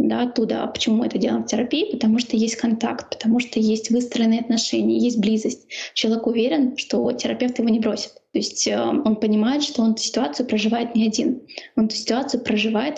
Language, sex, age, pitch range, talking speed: Russian, female, 10-29, 225-255 Hz, 190 wpm